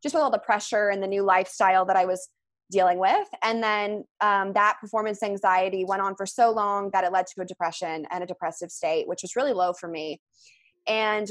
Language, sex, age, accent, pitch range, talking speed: English, female, 20-39, American, 195-235 Hz, 225 wpm